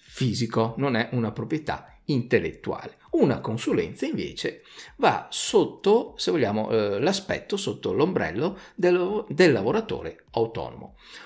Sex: male